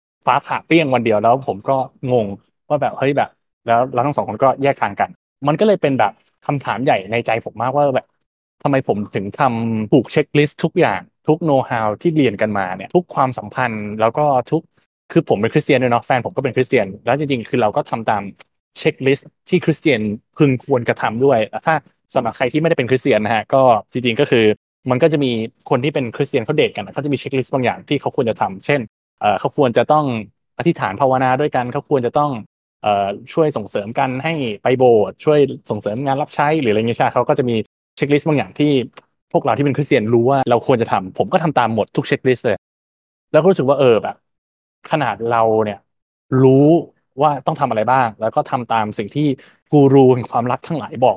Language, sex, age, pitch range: Thai, male, 20-39, 115-145 Hz